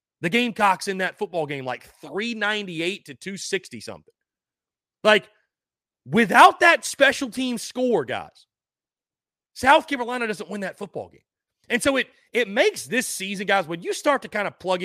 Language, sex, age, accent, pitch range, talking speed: English, male, 30-49, American, 190-255 Hz, 160 wpm